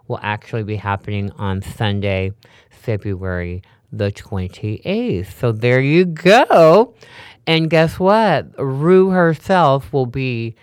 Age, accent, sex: 40-59, American, male